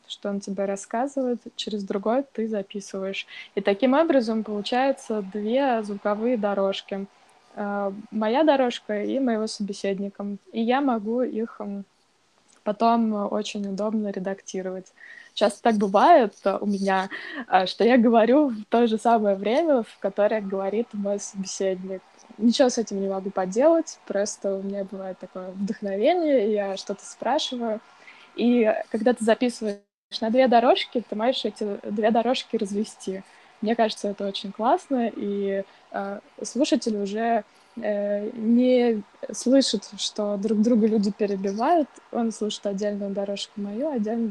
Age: 20-39